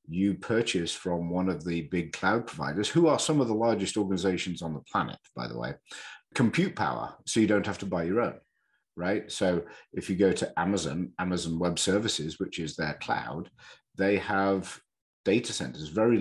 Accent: British